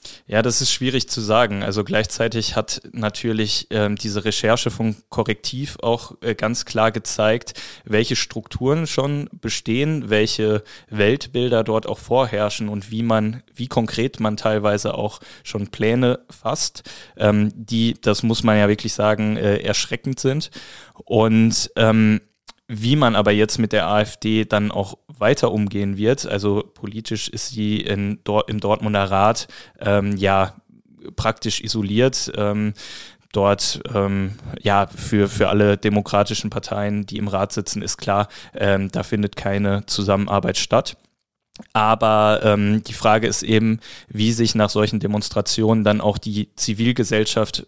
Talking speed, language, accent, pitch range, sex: 140 wpm, German, German, 105-115 Hz, male